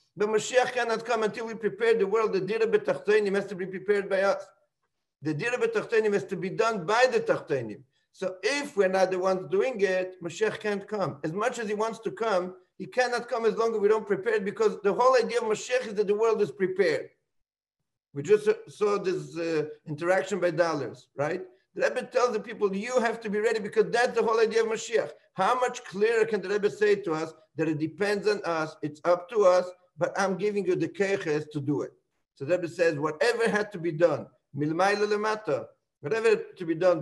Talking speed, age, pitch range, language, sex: 225 wpm, 50-69, 165-225 Hz, English, male